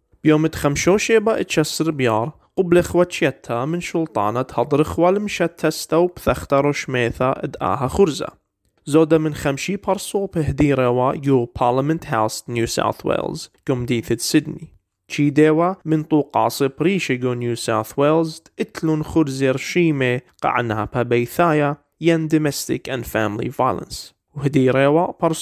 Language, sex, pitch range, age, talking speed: English, male, 130-175 Hz, 30-49, 95 wpm